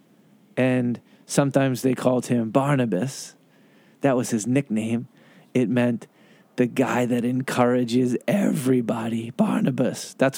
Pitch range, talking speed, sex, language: 125-155 Hz, 110 wpm, male, English